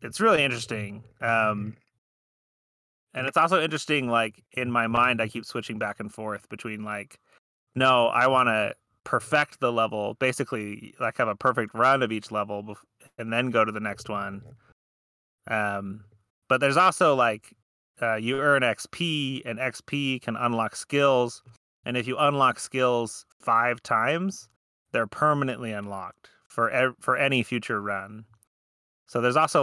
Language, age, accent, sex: English, 30-49, American, male